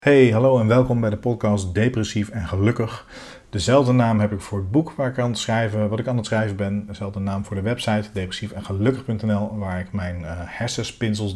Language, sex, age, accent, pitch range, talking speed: Dutch, male, 40-59, Dutch, 100-120 Hz, 205 wpm